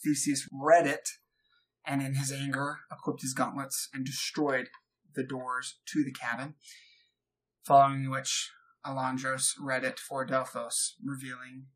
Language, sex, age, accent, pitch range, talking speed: English, male, 20-39, American, 130-150 Hz, 130 wpm